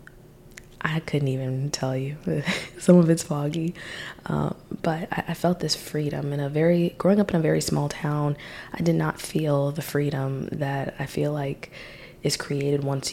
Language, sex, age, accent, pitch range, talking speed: English, female, 20-39, American, 135-165 Hz, 180 wpm